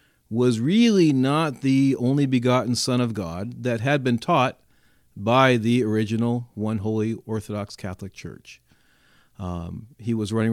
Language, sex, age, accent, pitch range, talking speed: English, male, 40-59, American, 110-135 Hz, 140 wpm